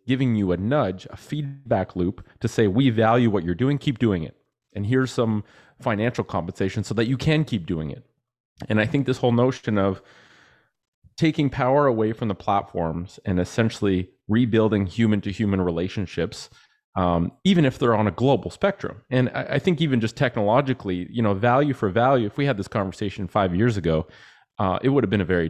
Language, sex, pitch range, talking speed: English, male, 95-130 Hz, 200 wpm